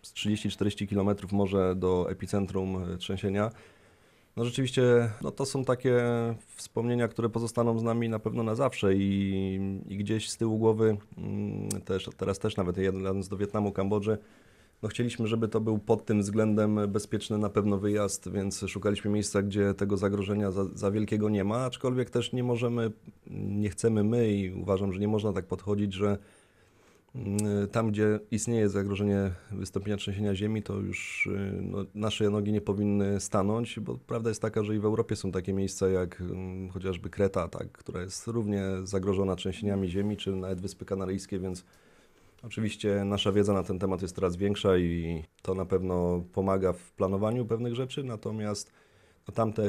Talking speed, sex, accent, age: 160 wpm, male, native, 30-49